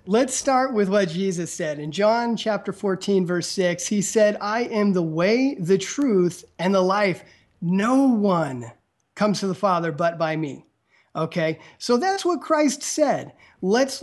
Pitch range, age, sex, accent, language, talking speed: 170-225 Hz, 30-49, male, American, English, 165 wpm